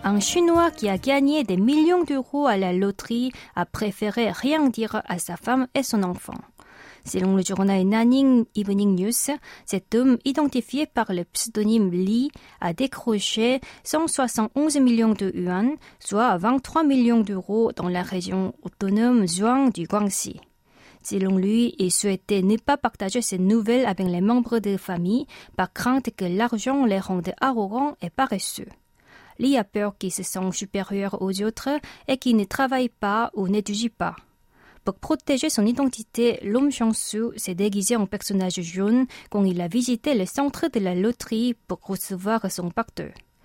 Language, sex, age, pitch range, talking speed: French, female, 30-49, 190-250 Hz, 160 wpm